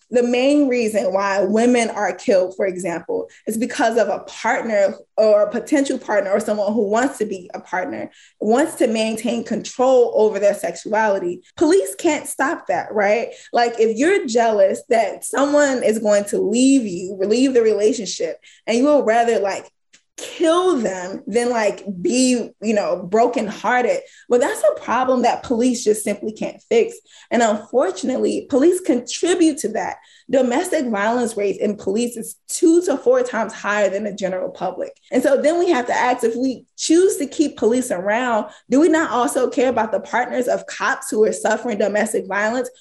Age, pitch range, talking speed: 10-29, 215-290 Hz, 175 wpm